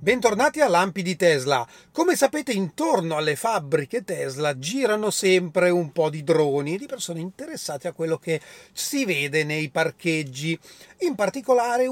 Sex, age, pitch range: male, 40-59, 150-195 Hz